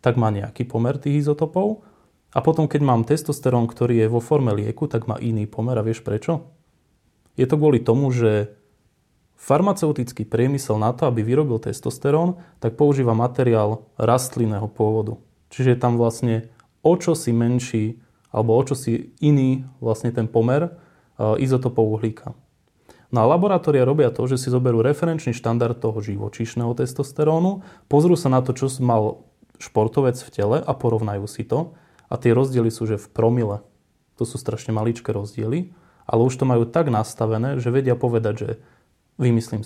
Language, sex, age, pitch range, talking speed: Slovak, male, 20-39, 115-145 Hz, 165 wpm